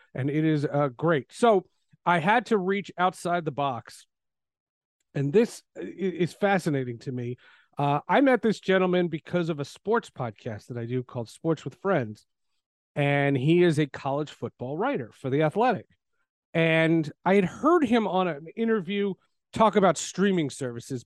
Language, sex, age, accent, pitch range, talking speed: English, male, 40-59, American, 145-215 Hz, 165 wpm